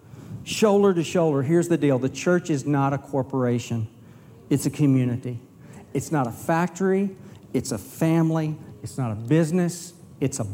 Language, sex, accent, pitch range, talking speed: English, male, American, 135-175 Hz, 160 wpm